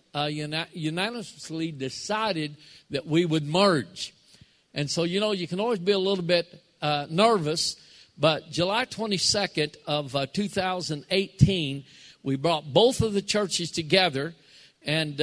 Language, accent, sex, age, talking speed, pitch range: English, American, male, 50-69, 135 wpm, 145-180 Hz